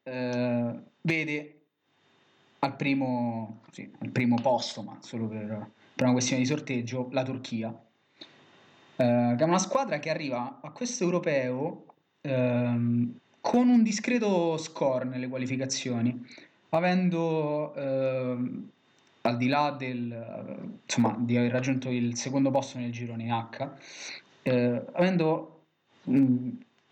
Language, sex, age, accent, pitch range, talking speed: Italian, male, 20-39, native, 120-150 Hz, 120 wpm